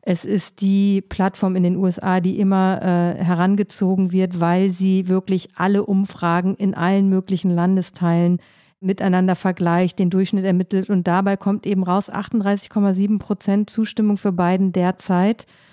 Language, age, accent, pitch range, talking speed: German, 50-69, German, 180-205 Hz, 140 wpm